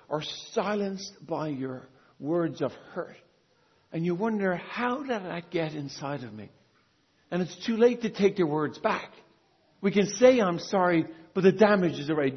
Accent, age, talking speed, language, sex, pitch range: American, 50-69, 175 wpm, English, male, 140-195 Hz